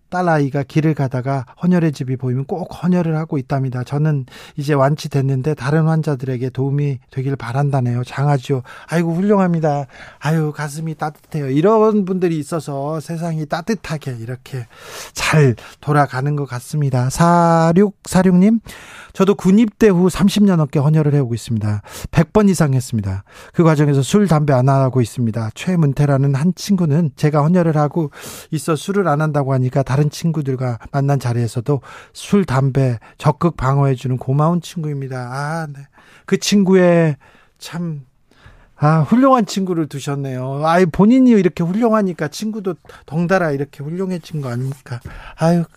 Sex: male